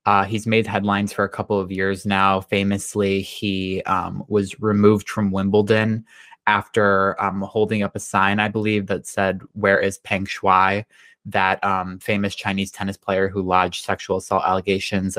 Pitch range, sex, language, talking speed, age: 100-115 Hz, male, English, 165 wpm, 20-39